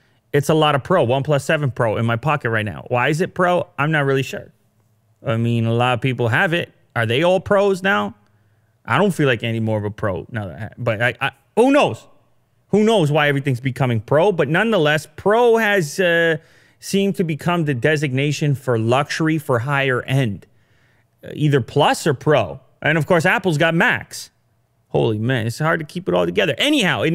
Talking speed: 210 wpm